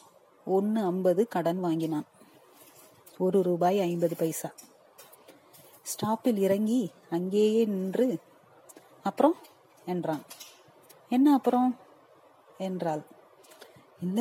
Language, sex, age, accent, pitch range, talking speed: Tamil, female, 30-49, native, 180-235 Hz, 75 wpm